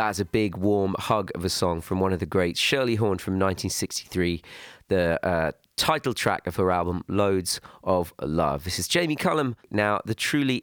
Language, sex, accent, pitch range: French, male, British, 90-105 Hz